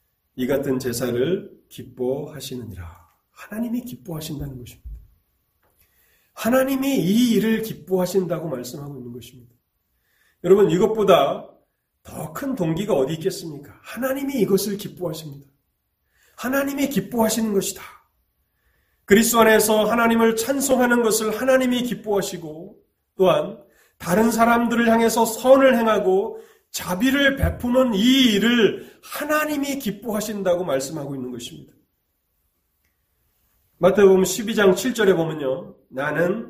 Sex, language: male, Korean